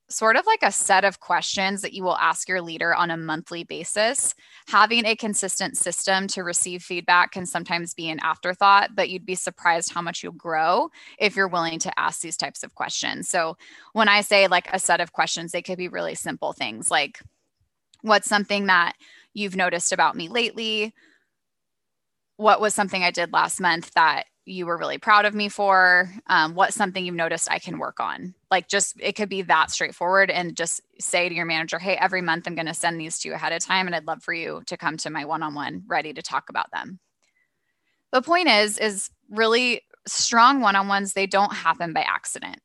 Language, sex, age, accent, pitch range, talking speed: English, female, 20-39, American, 175-210 Hz, 205 wpm